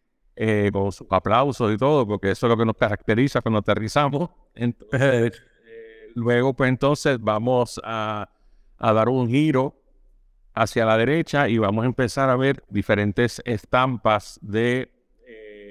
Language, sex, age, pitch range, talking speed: Spanish, male, 50-69, 115-145 Hz, 140 wpm